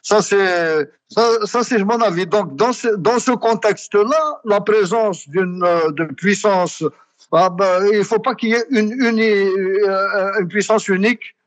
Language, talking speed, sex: French, 165 wpm, male